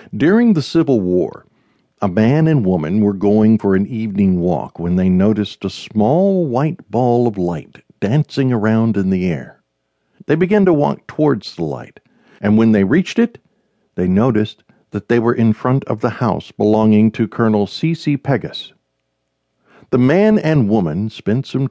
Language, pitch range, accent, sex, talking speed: English, 95-145 Hz, American, male, 170 wpm